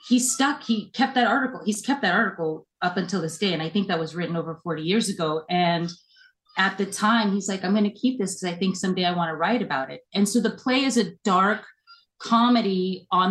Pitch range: 170-215 Hz